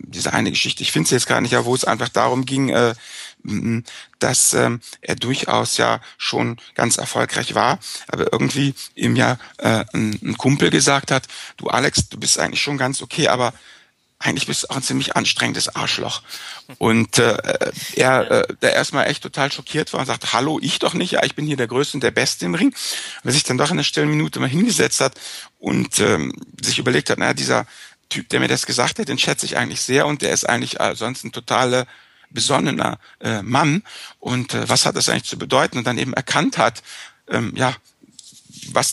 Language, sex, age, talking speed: German, male, 60-79, 200 wpm